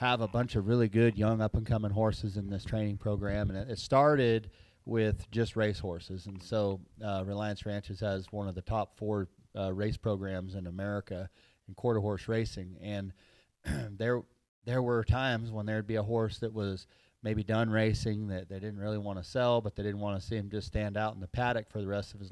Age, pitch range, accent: 30-49, 100-115 Hz, American